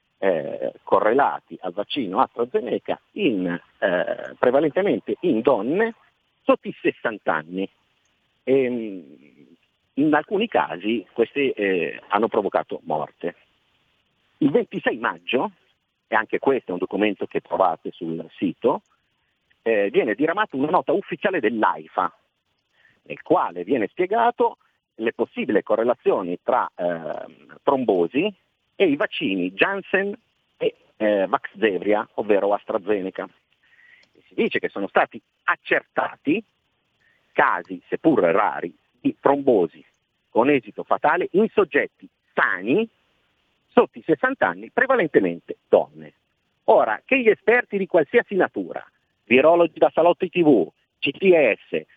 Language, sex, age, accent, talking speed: Italian, male, 50-69, native, 110 wpm